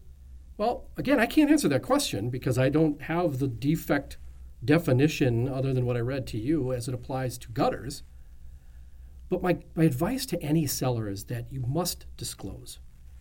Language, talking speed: English, 175 wpm